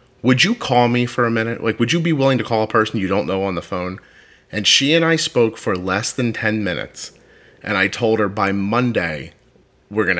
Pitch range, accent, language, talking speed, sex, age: 110-145 Hz, American, English, 235 wpm, male, 30-49